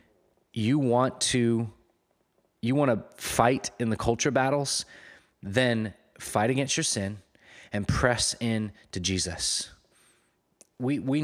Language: English